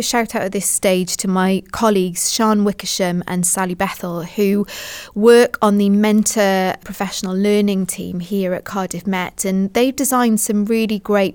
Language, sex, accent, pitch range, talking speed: English, female, British, 185-235 Hz, 170 wpm